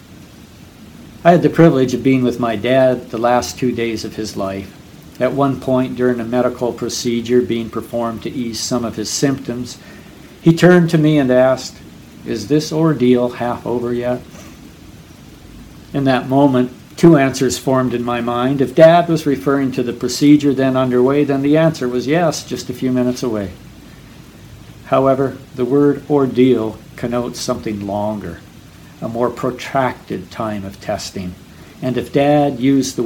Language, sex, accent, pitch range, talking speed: English, male, American, 115-135 Hz, 160 wpm